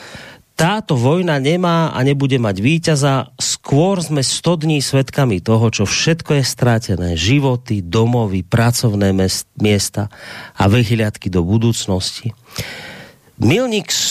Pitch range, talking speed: 100-130 Hz, 110 wpm